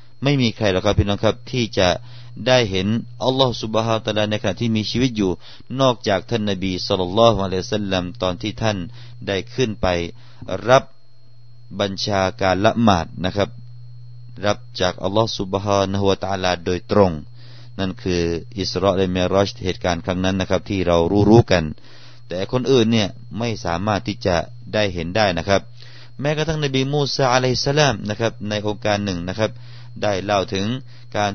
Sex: male